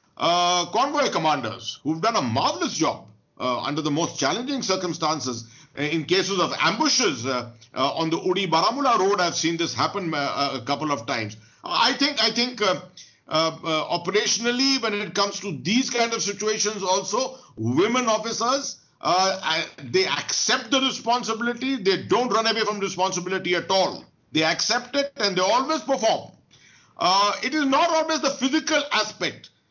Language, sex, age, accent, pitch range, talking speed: English, male, 50-69, Indian, 160-220 Hz, 165 wpm